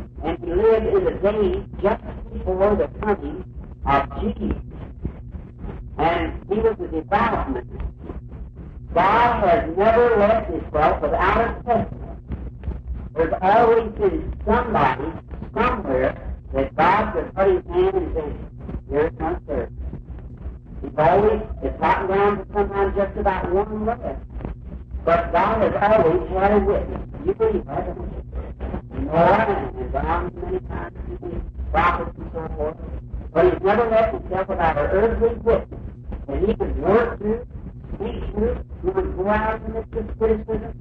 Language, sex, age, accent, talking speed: English, male, 50-69, American, 145 wpm